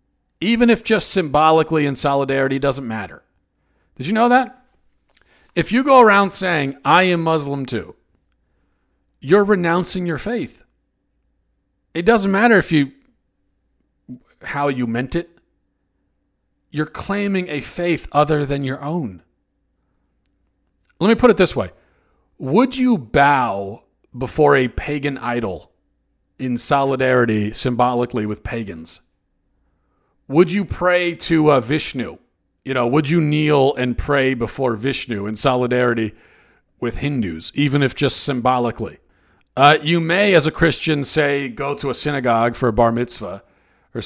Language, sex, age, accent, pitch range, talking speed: English, male, 40-59, American, 105-155 Hz, 135 wpm